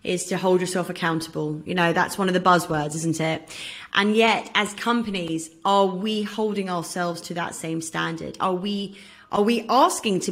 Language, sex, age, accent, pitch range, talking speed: English, female, 30-49, British, 175-215 Hz, 185 wpm